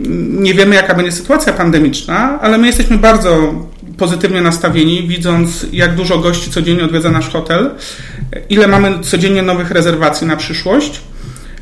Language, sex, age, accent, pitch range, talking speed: Polish, male, 40-59, native, 150-185 Hz, 140 wpm